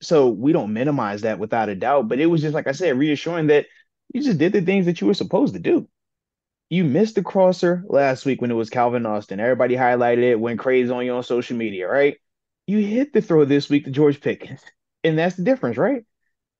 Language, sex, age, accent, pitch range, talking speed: English, male, 20-39, American, 125-185 Hz, 230 wpm